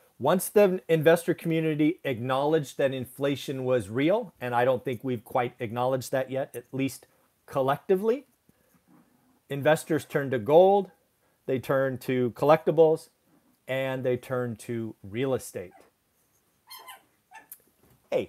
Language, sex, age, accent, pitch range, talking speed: English, male, 40-59, American, 115-155 Hz, 120 wpm